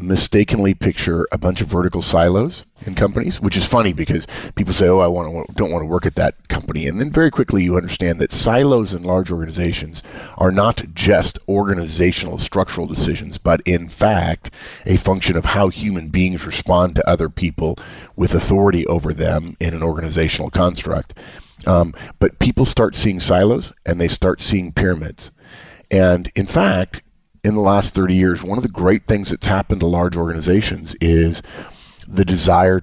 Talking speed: 170 wpm